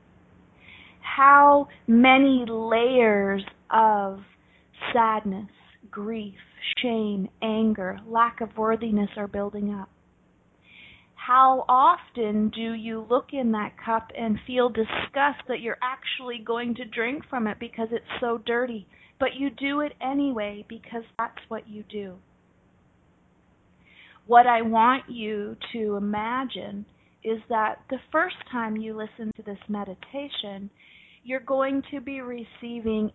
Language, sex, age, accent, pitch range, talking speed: English, female, 30-49, American, 215-255 Hz, 125 wpm